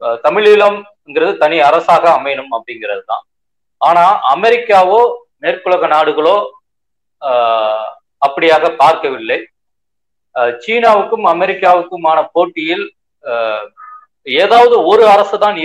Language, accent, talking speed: Tamil, native, 70 wpm